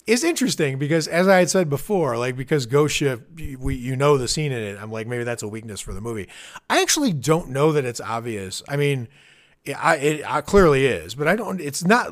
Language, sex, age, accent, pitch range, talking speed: English, male, 30-49, American, 100-145 Hz, 225 wpm